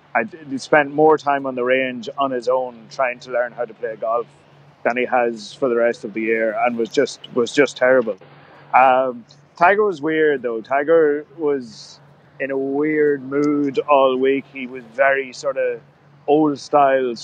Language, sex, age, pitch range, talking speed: English, male, 30-49, 130-155 Hz, 180 wpm